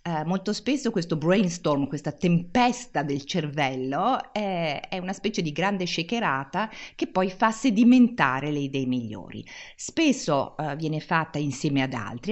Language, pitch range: Italian, 145-230 Hz